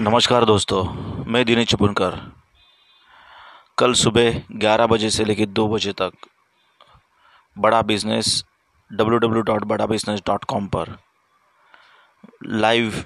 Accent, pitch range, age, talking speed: native, 110-125 Hz, 30-49, 85 wpm